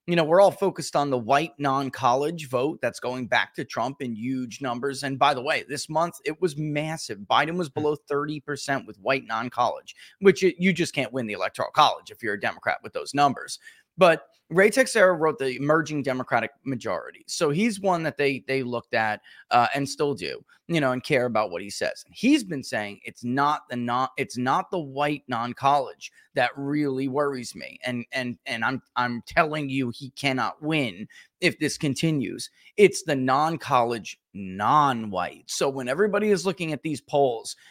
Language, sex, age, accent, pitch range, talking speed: English, male, 30-49, American, 130-170 Hz, 190 wpm